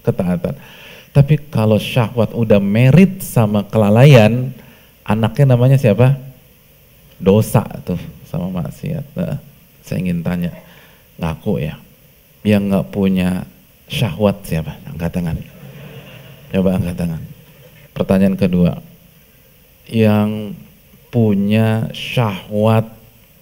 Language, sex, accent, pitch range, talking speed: Indonesian, male, native, 110-165 Hz, 90 wpm